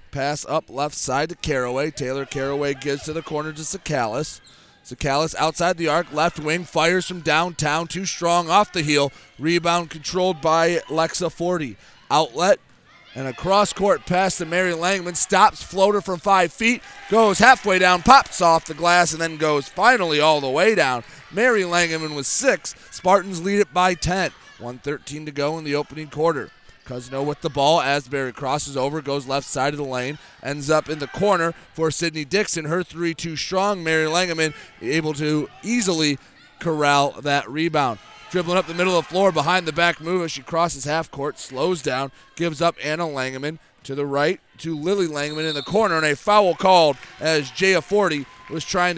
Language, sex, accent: English, male, American